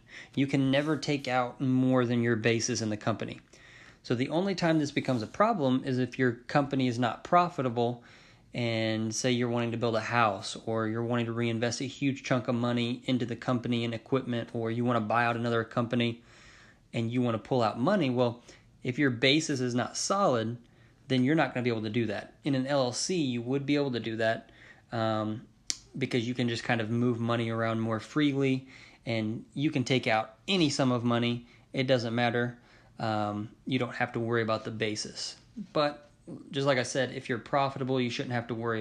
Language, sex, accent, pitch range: English, male, American, 115-130 Hz